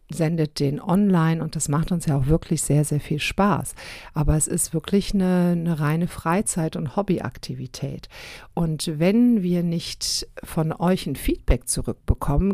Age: 50-69